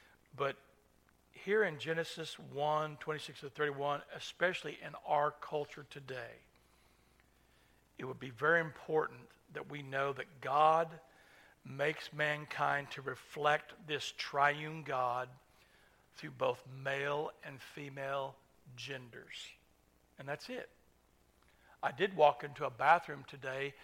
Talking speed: 115 wpm